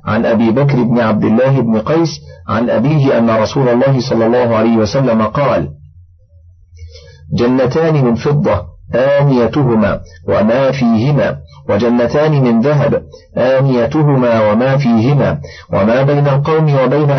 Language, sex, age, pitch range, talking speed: Arabic, male, 40-59, 105-140 Hz, 120 wpm